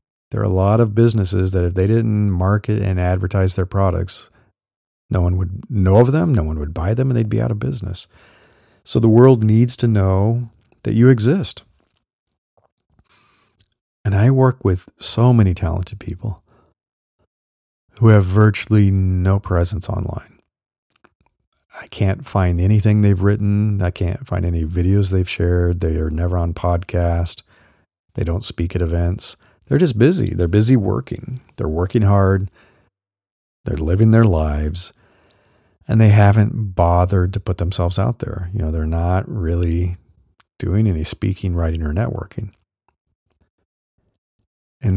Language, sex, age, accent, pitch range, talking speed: English, male, 50-69, American, 90-110 Hz, 150 wpm